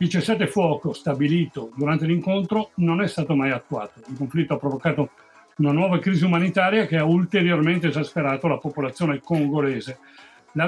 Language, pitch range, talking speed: Italian, 145-180 Hz, 150 wpm